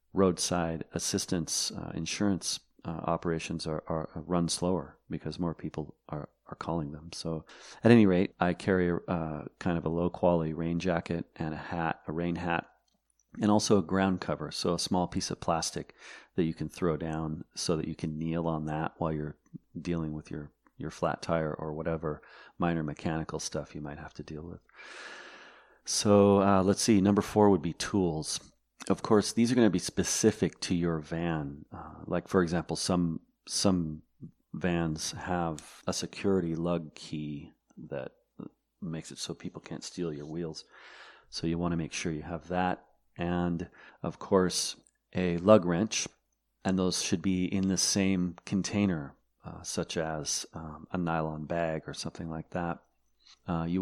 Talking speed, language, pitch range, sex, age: 175 wpm, English, 80-95 Hz, male, 40-59